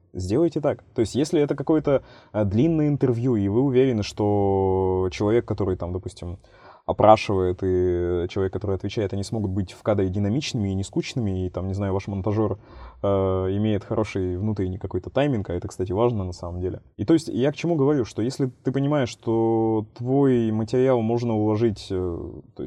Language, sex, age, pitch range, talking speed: Russian, male, 20-39, 100-135 Hz, 175 wpm